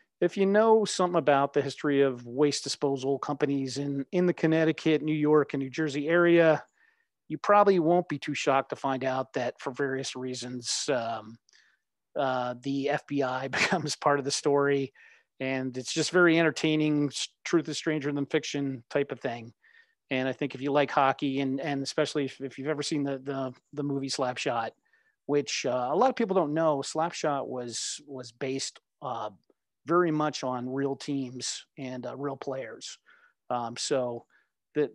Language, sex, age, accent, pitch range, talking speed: English, male, 40-59, American, 135-160 Hz, 175 wpm